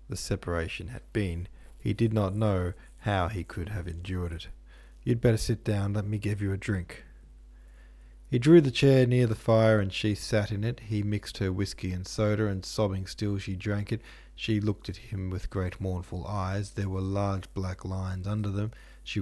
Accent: Australian